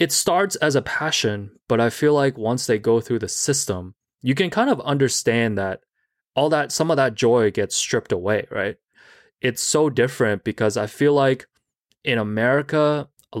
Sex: male